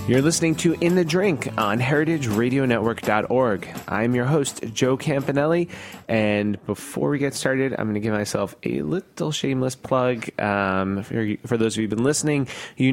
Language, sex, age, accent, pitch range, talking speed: English, male, 30-49, American, 105-140 Hz, 170 wpm